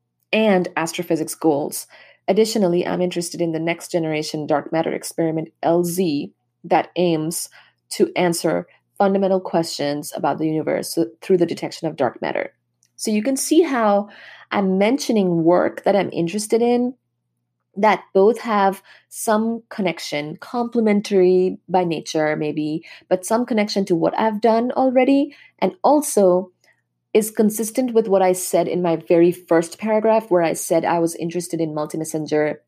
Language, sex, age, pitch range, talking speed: English, female, 30-49, 165-215 Hz, 145 wpm